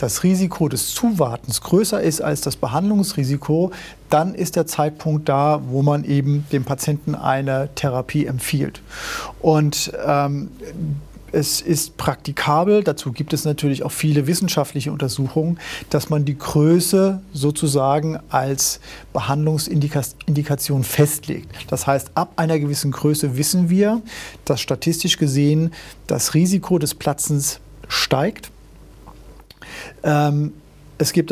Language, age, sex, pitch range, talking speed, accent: German, 40-59, male, 140-165 Hz, 120 wpm, German